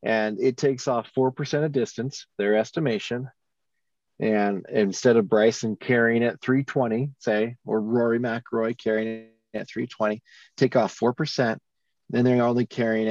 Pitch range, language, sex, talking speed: 115-145 Hz, English, male, 140 wpm